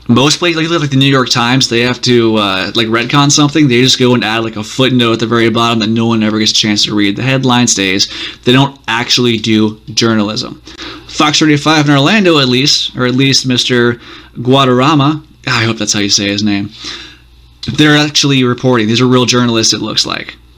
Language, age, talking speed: English, 20-39, 210 wpm